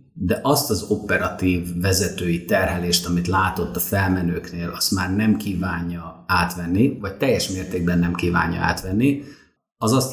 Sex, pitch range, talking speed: male, 90-120 Hz, 135 wpm